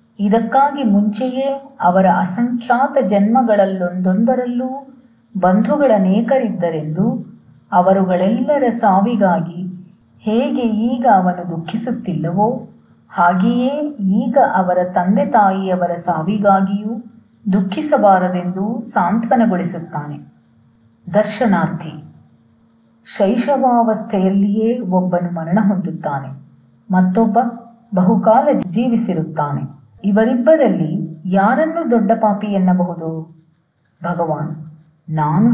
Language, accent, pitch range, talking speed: Kannada, native, 170-225 Hz, 60 wpm